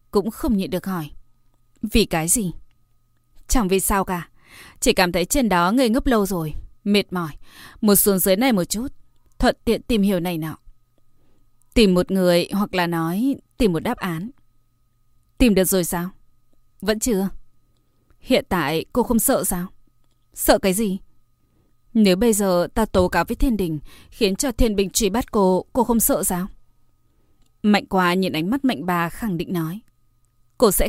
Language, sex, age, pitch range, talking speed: Vietnamese, female, 20-39, 170-220 Hz, 180 wpm